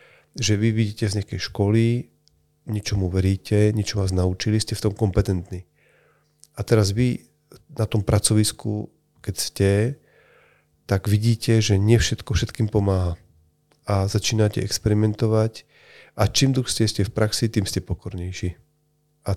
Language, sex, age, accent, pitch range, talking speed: Czech, male, 40-59, native, 100-115 Hz, 135 wpm